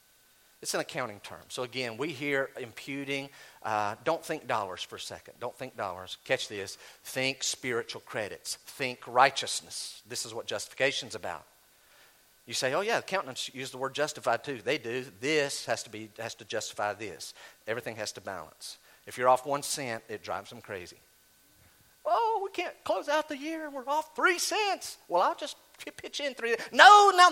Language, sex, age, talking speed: English, male, 50-69, 185 wpm